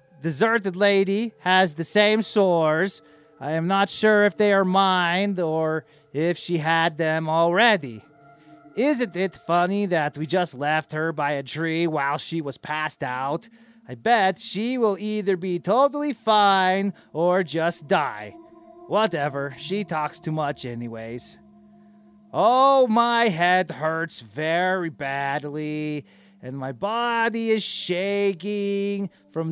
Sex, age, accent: male, 30-49, American